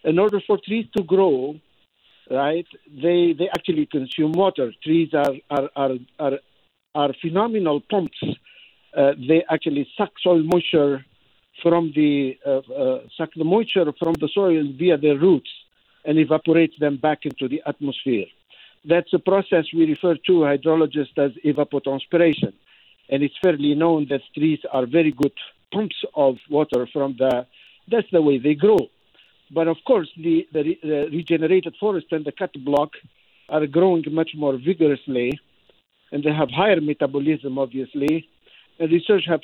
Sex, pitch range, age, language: male, 145-180 Hz, 50-69, English